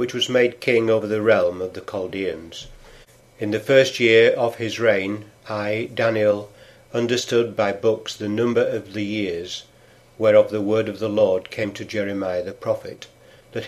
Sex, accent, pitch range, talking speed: male, British, 105-120 Hz, 170 wpm